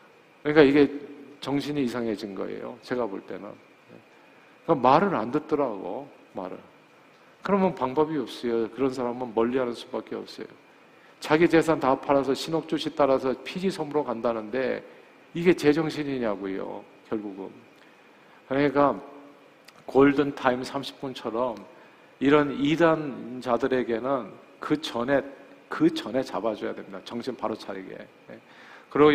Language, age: Korean, 50-69